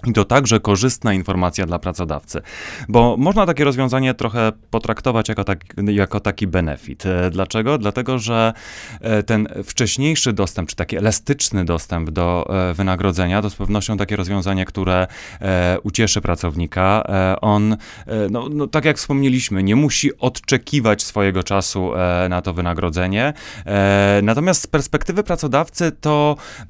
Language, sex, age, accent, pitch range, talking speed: Polish, male, 30-49, native, 95-135 Hz, 120 wpm